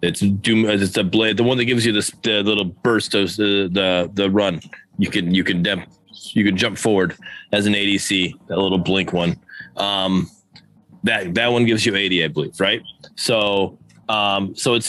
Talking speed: 200 wpm